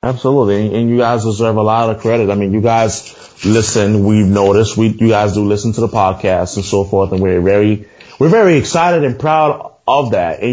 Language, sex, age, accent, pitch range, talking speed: English, male, 20-39, American, 105-130 Hz, 215 wpm